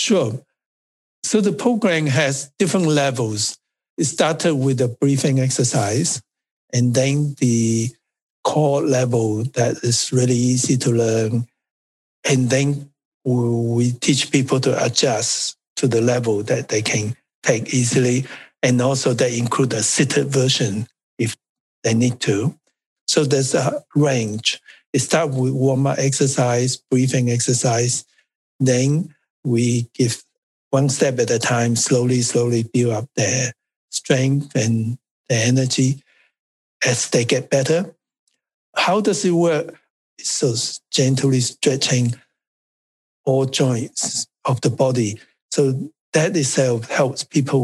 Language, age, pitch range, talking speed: English, 60-79, 120-140 Hz, 125 wpm